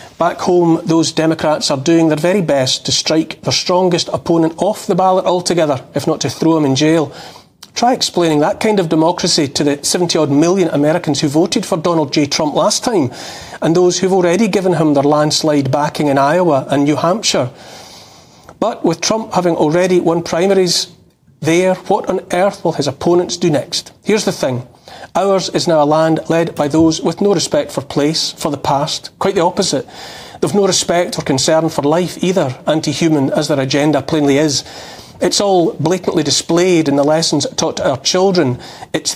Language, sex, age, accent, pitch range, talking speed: English, male, 40-59, British, 150-180 Hz, 185 wpm